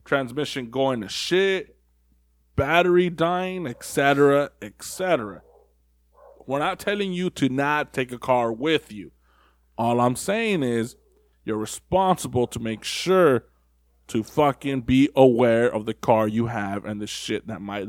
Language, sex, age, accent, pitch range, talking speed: English, male, 20-39, American, 95-145 Hz, 140 wpm